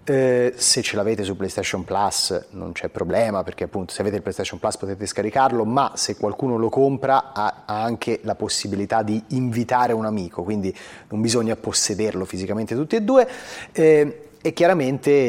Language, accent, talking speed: Italian, native, 175 wpm